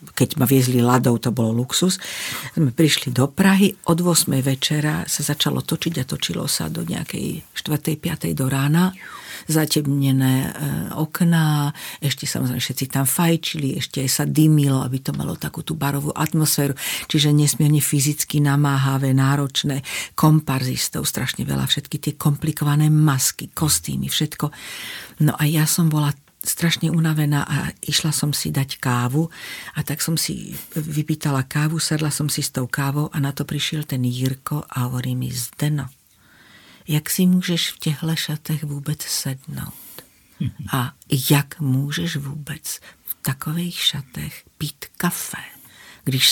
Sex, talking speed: female, 145 wpm